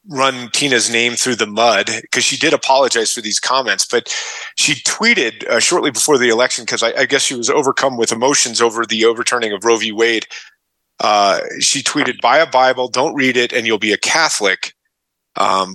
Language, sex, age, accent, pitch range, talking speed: English, male, 30-49, American, 115-130 Hz, 200 wpm